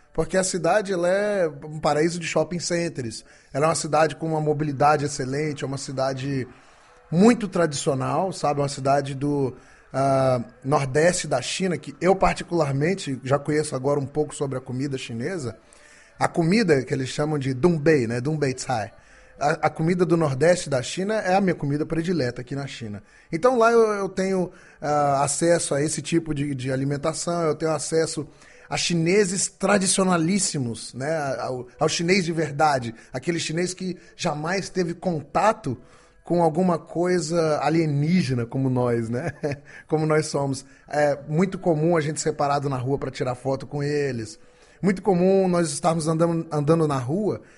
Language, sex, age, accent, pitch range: Chinese, male, 20-39, Brazilian, 140-175 Hz